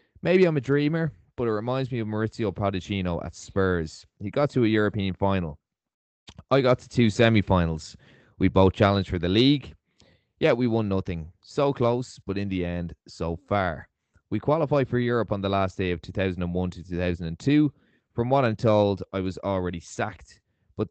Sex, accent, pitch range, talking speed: male, Irish, 90-115 Hz, 180 wpm